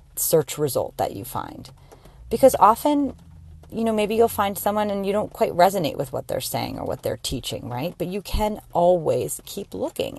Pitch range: 135-170 Hz